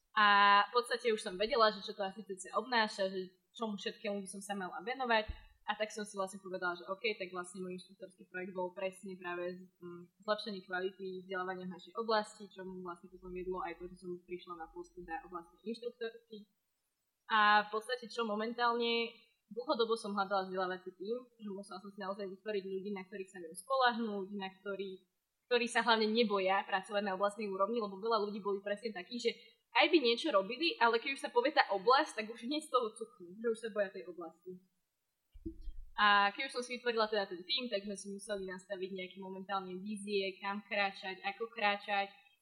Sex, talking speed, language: female, 195 wpm, Slovak